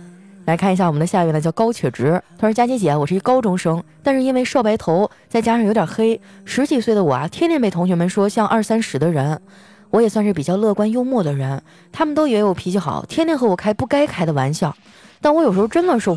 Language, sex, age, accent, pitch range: Chinese, female, 20-39, native, 170-240 Hz